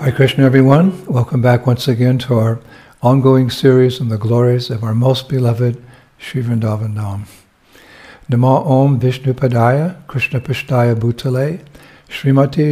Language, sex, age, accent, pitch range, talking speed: English, male, 60-79, American, 120-135 Hz, 130 wpm